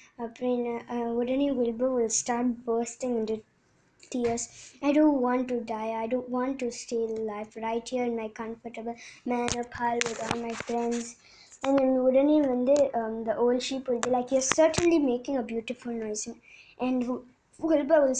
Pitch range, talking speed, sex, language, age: 235-270 Hz, 180 wpm, male, Tamil, 20-39